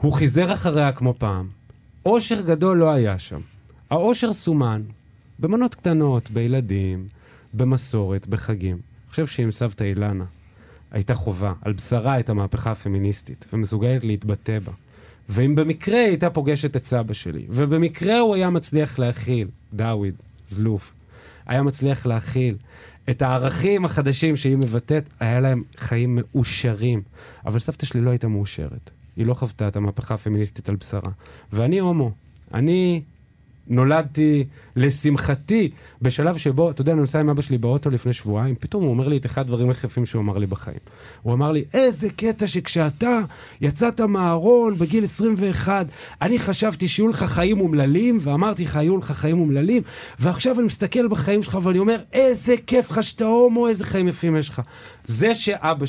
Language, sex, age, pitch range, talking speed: Hebrew, male, 20-39, 115-170 Hz, 150 wpm